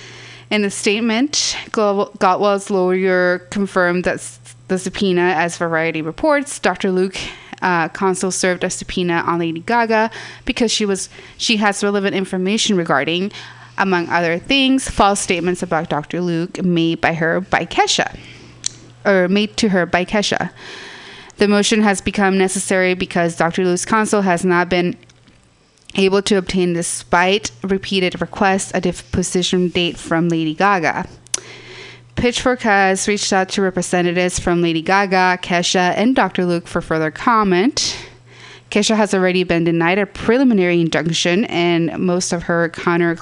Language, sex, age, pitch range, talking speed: English, female, 20-39, 175-200 Hz, 140 wpm